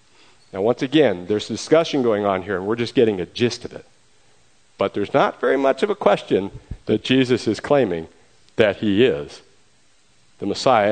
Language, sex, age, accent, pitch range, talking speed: English, male, 50-69, American, 115-170 Hz, 180 wpm